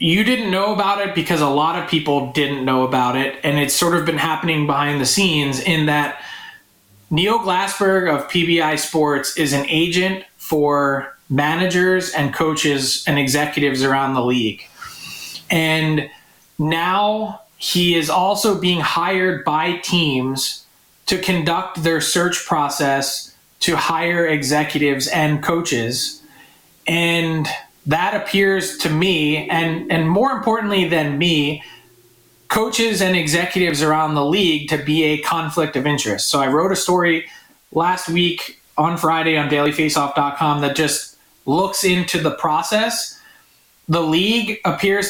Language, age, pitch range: English, 20-39, 150-185 Hz